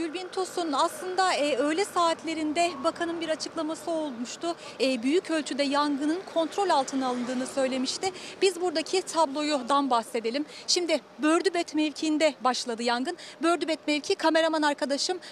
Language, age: Turkish, 40-59